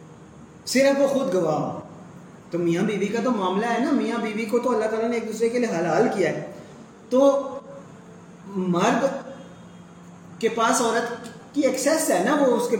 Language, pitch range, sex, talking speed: Urdu, 190-245 Hz, male, 190 wpm